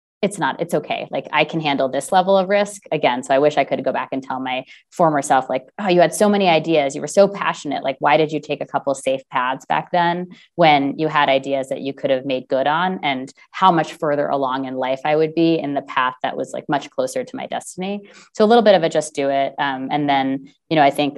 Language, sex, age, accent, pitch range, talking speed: English, female, 20-39, American, 135-170 Hz, 270 wpm